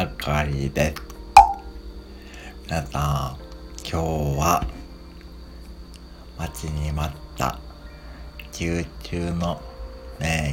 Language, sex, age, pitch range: Japanese, male, 60-79, 65-80 Hz